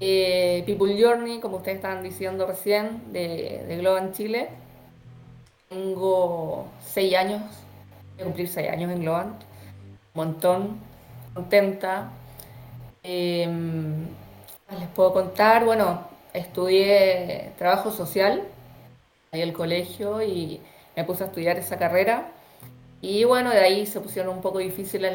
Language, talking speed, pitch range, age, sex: Spanish, 130 wpm, 165-205 Hz, 20-39, female